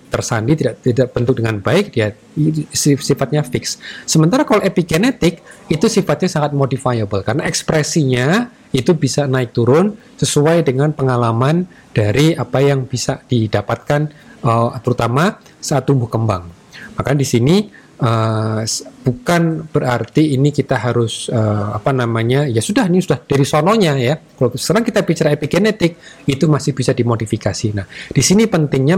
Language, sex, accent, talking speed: Indonesian, male, native, 140 wpm